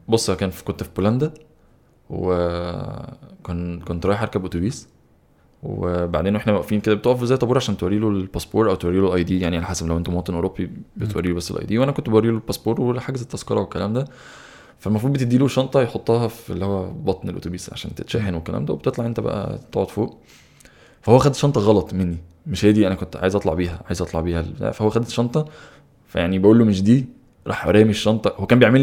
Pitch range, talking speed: 90-120 Hz, 200 wpm